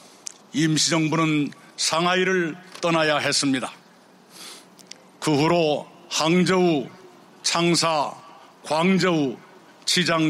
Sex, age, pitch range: male, 50-69, 150-180 Hz